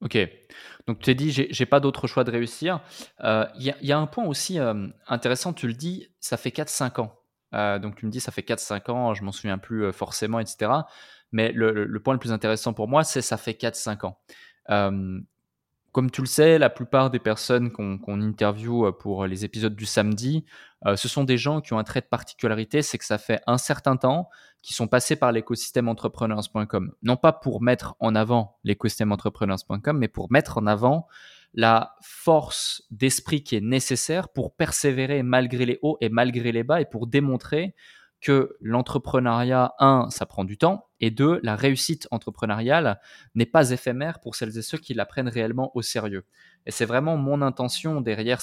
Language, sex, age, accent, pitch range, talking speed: French, male, 20-39, French, 105-135 Hz, 205 wpm